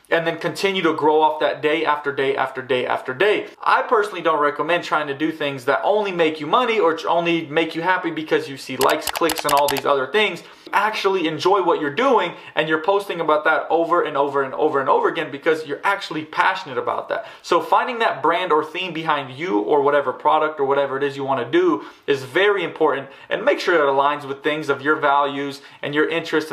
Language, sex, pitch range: English, male, 150-195 Hz